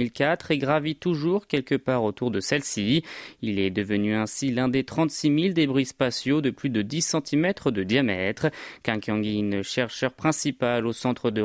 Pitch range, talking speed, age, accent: 120-155 Hz, 160 wpm, 30-49, French